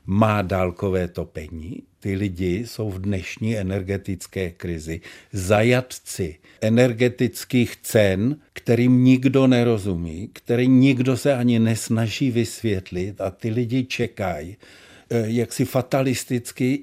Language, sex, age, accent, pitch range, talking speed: Czech, male, 60-79, native, 100-120 Hz, 105 wpm